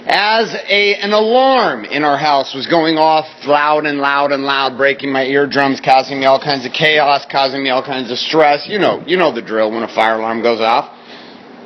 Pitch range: 130-180 Hz